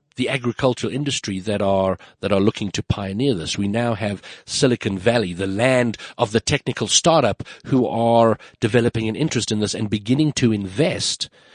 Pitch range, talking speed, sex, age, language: 100-125 Hz, 170 wpm, male, 60-79, English